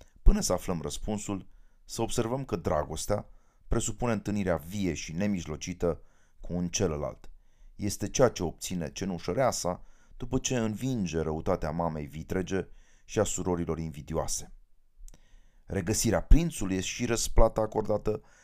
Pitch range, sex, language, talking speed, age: 80-105 Hz, male, Romanian, 125 wpm, 30-49